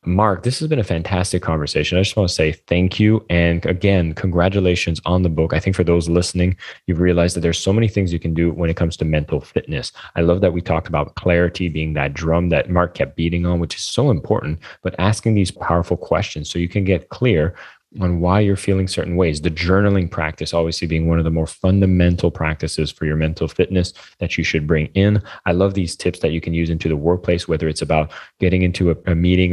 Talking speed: 230 wpm